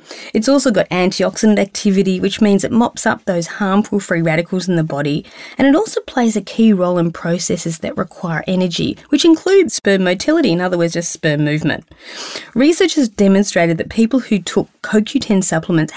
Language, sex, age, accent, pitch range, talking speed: English, female, 30-49, Australian, 170-230 Hz, 180 wpm